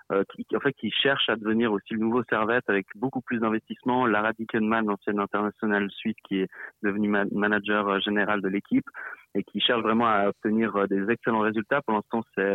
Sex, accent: male, French